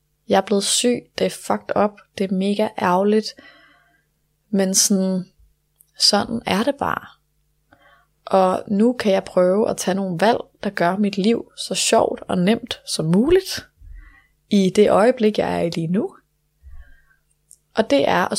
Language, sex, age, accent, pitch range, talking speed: Danish, female, 20-39, native, 150-215 Hz, 160 wpm